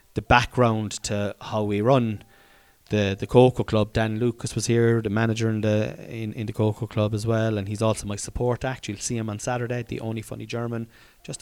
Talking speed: 215 wpm